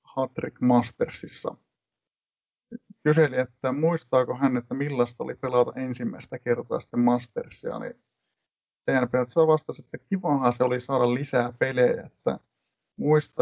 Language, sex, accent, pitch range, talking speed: Finnish, male, native, 120-145 Hz, 125 wpm